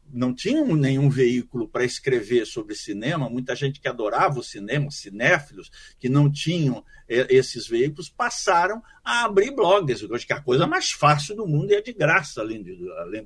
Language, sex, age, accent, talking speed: Portuguese, male, 50-69, Brazilian, 165 wpm